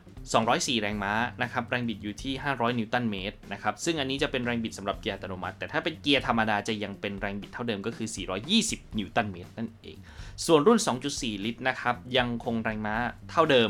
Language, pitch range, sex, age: Thai, 100-130 Hz, male, 20-39